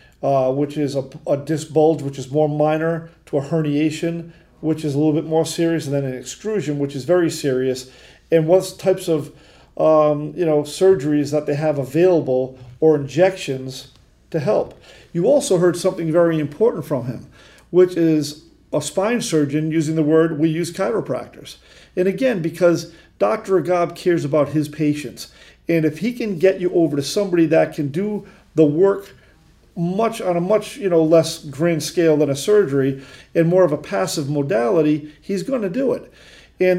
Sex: male